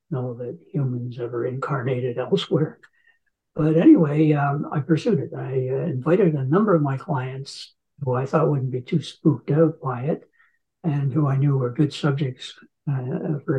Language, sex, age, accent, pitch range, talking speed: English, male, 60-79, American, 135-165 Hz, 170 wpm